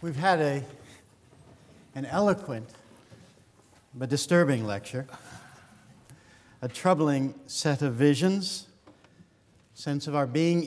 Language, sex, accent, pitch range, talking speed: English, male, American, 110-160 Hz, 100 wpm